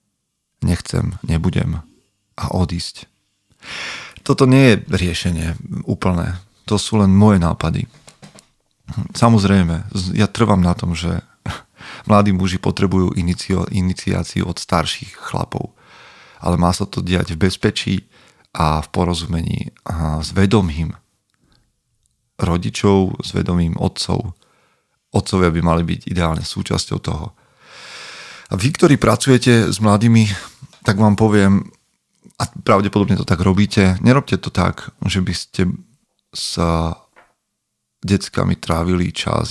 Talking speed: 115 wpm